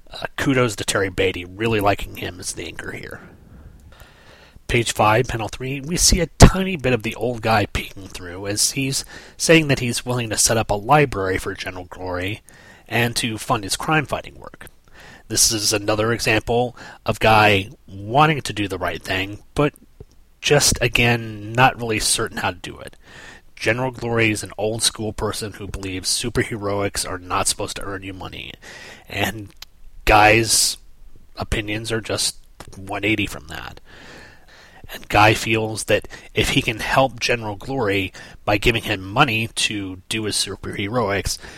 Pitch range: 100-115 Hz